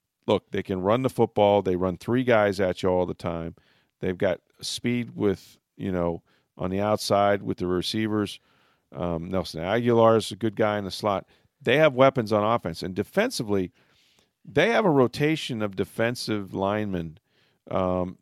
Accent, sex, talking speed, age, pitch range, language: American, male, 170 wpm, 40-59, 95-120 Hz, English